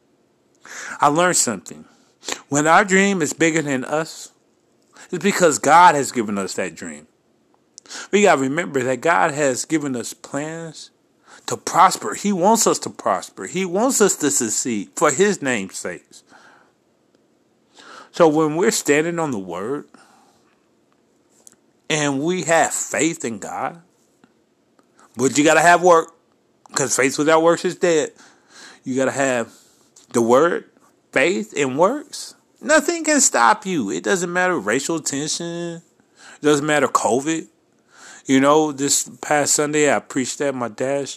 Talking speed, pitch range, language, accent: 145 wpm, 125-165 Hz, English, American